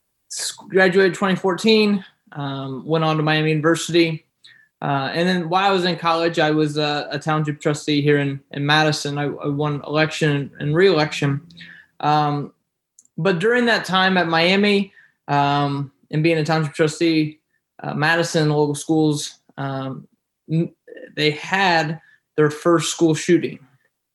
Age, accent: 20-39, American